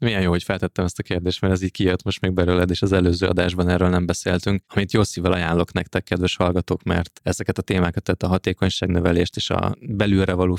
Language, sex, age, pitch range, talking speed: Hungarian, male, 20-39, 85-95 Hz, 215 wpm